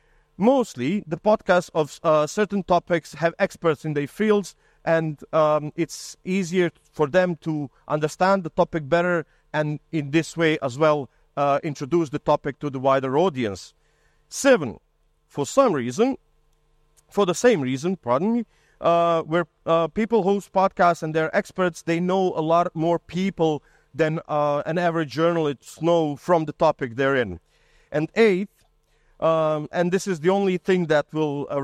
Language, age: English, 40-59